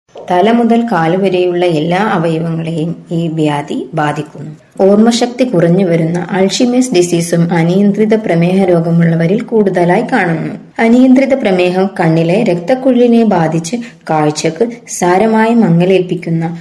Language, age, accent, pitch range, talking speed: Malayalam, 20-39, native, 170-220 Hz, 85 wpm